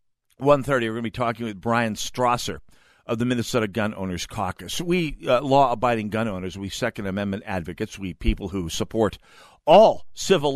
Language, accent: English, American